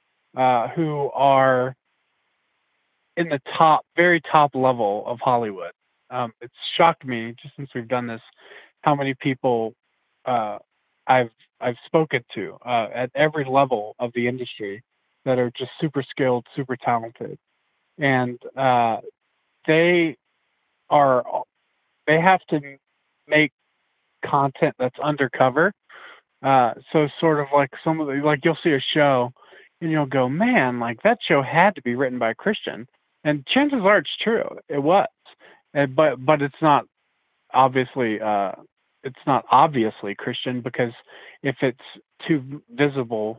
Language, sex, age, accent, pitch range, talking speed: English, male, 20-39, American, 120-155 Hz, 140 wpm